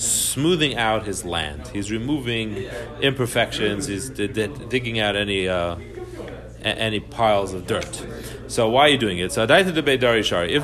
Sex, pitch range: male, 105-130 Hz